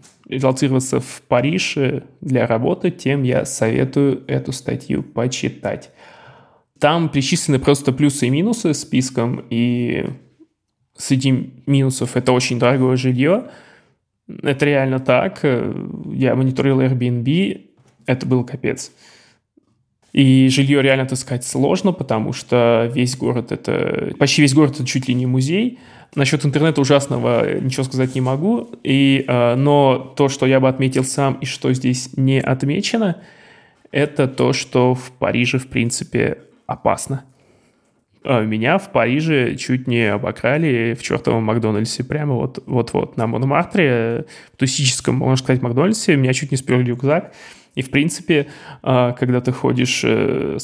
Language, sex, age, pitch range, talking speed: Russian, male, 20-39, 125-145 Hz, 125 wpm